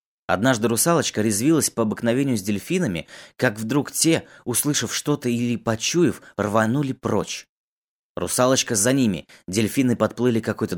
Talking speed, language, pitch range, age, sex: 130 wpm, Russian, 100-130 Hz, 20-39, male